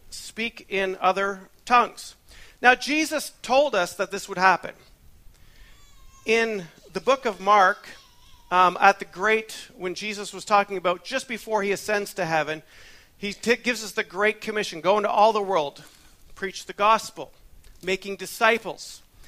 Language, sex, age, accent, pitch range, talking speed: English, male, 40-59, American, 170-230 Hz, 150 wpm